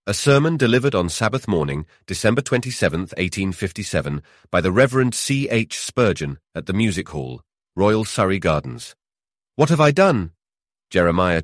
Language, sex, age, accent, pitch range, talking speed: English, male, 40-59, British, 80-100 Hz, 140 wpm